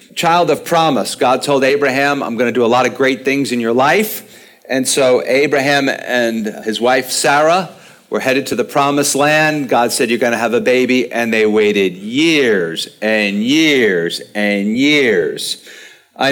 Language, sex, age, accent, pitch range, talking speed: English, male, 50-69, American, 115-145 Hz, 175 wpm